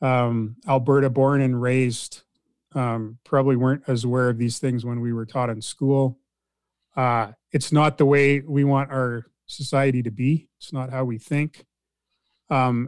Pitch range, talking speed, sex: 125-145 Hz, 170 wpm, male